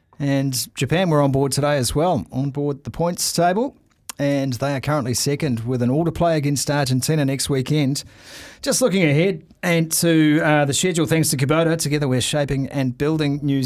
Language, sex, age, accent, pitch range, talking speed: English, male, 30-49, Australian, 125-155 Hz, 185 wpm